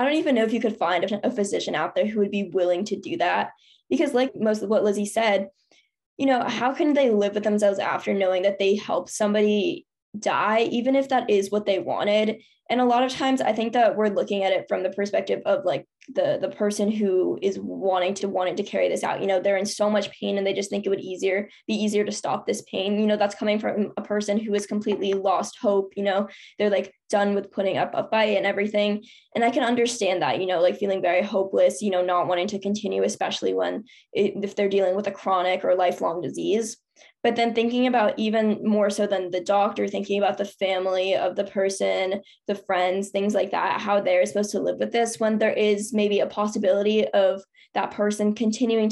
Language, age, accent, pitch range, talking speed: English, 10-29, American, 195-220 Hz, 230 wpm